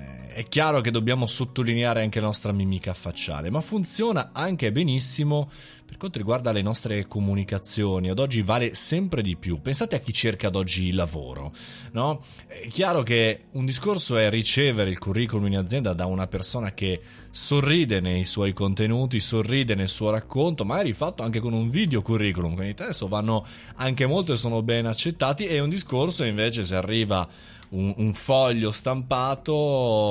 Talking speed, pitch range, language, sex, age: 170 wpm, 105-135 Hz, Italian, male, 20-39